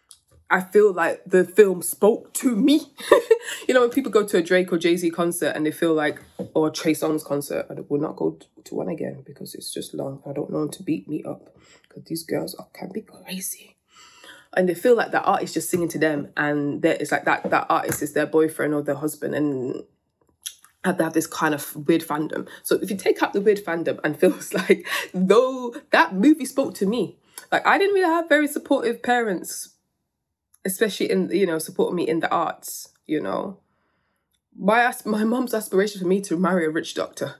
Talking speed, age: 210 wpm, 20-39